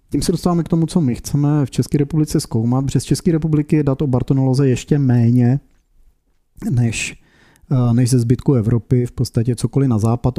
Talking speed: 180 wpm